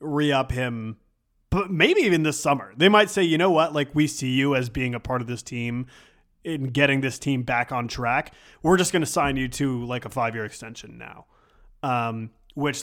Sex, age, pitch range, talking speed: male, 20-39, 120-155 Hz, 210 wpm